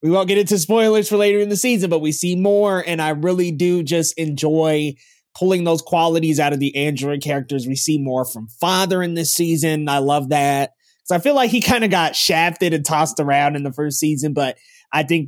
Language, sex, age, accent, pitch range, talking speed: English, male, 20-39, American, 140-175 Hz, 230 wpm